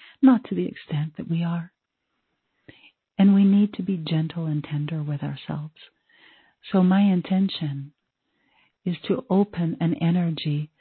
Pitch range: 155-180 Hz